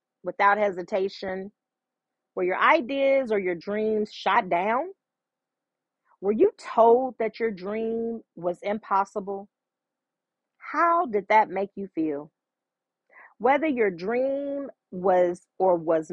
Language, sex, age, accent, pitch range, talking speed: English, female, 40-59, American, 180-255 Hz, 110 wpm